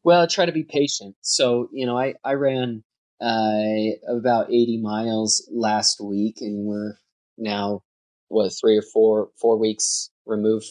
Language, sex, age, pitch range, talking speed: English, male, 20-39, 110-125 Hz, 155 wpm